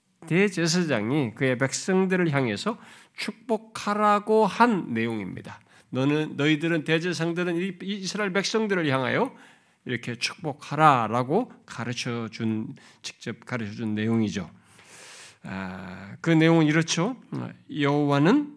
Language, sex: Korean, male